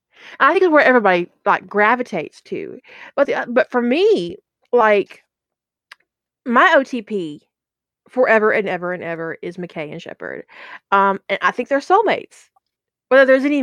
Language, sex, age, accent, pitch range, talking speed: English, female, 30-49, American, 180-270 Hz, 155 wpm